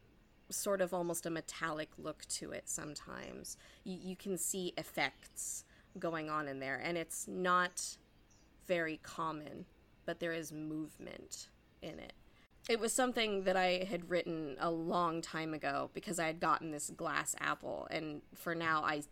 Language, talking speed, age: English, 160 wpm, 20-39